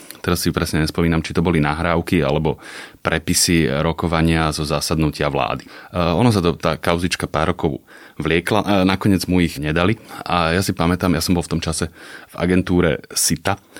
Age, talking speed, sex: 30-49, 170 wpm, male